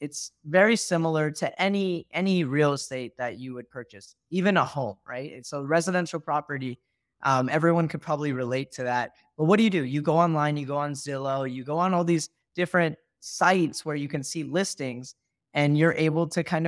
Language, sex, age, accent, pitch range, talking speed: English, male, 20-39, American, 135-165 Hz, 200 wpm